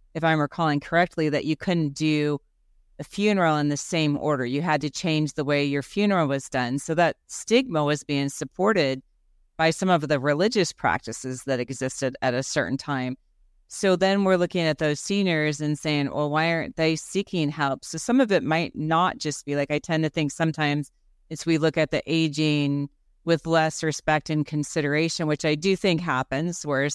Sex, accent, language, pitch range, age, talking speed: female, American, English, 140-165 Hz, 30-49, 195 wpm